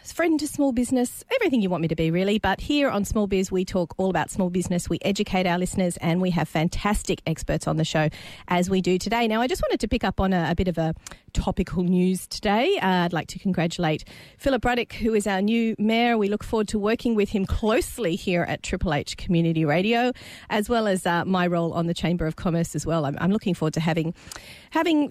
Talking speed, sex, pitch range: 240 wpm, female, 165-210 Hz